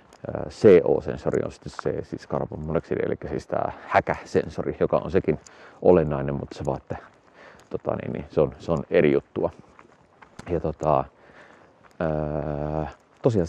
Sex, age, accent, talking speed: male, 30-49, native, 135 wpm